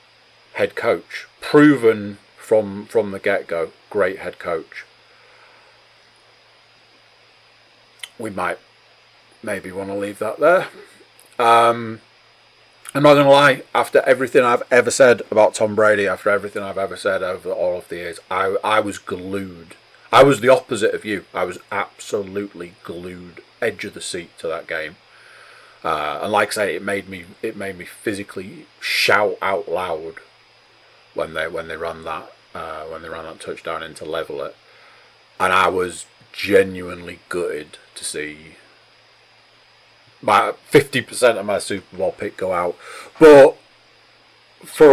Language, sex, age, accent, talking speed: English, male, 30-49, British, 150 wpm